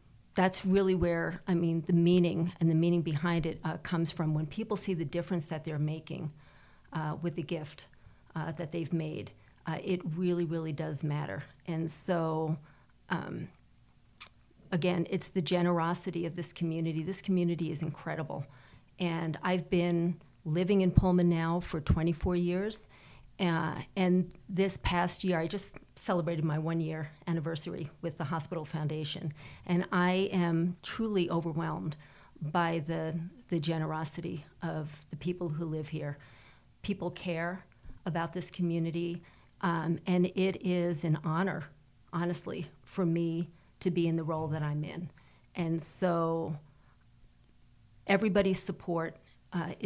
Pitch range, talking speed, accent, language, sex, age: 155-175 Hz, 145 wpm, American, English, female, 40-59